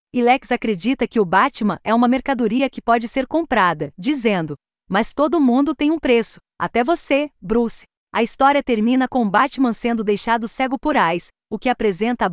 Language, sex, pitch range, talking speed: Portuguese, female, 205-255 Hz, 185 wpm